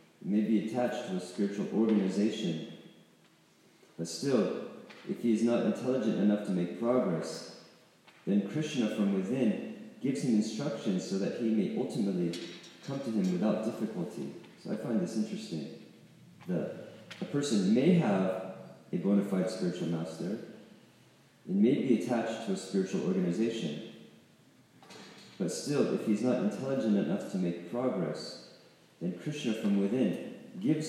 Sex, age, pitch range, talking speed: male, 40-59, 90-115 Hz, 140 wpm